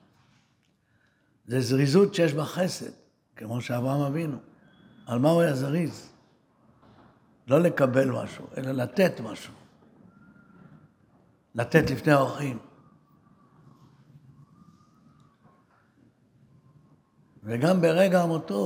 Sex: male